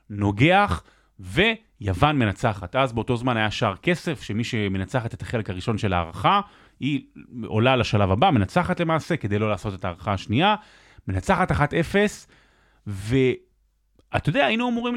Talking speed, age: 130 wpm, 30-49